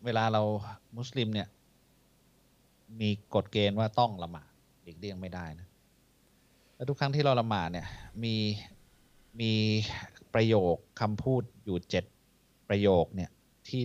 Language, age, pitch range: Thai, 20-39, 100-140 Hz